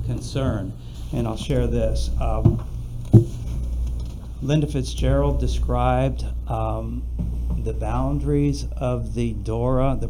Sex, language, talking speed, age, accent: male, English, 95 wpm, 60-79, American